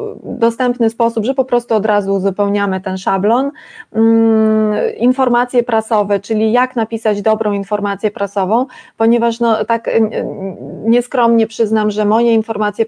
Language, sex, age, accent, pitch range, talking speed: Polish, female, 20-39, native, 210-235 Hz, 120 wpm